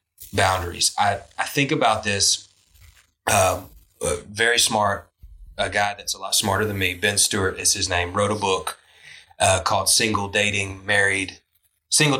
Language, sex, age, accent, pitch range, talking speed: English, male, 20-39, American, 95-125 Hz, 150 wpm